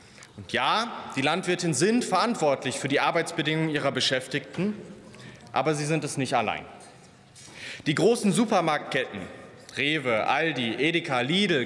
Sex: male